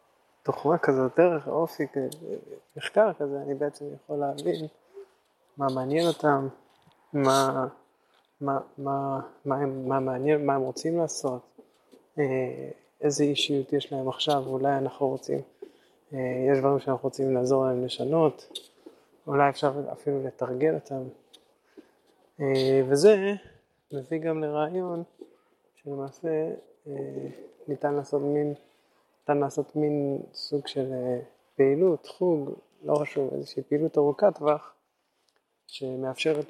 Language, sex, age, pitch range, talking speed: English, male, 20-39, 135-160 Hz, 70 wpm